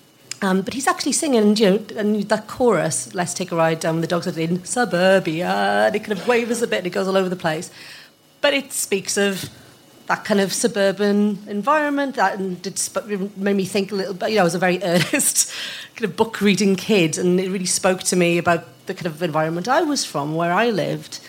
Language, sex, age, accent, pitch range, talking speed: English, female, 40-59, British, 175-220 Hz, 230 wpm